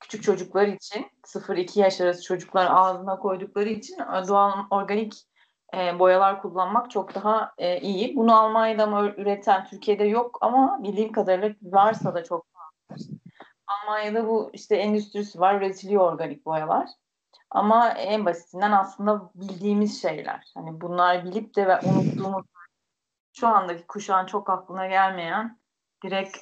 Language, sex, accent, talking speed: Turkish, female, native, 125 wpm